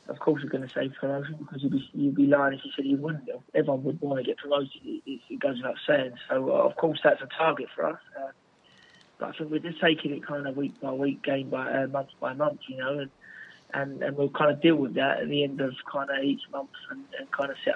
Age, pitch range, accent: 20-39, 135-155 Hz, British